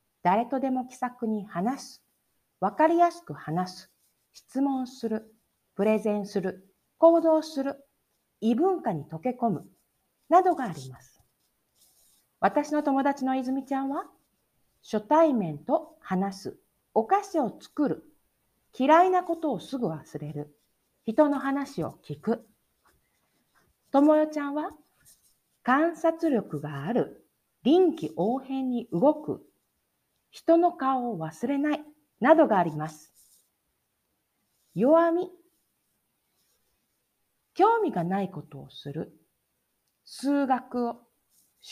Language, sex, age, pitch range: Japanese, female, 50-69, 205-315 Hz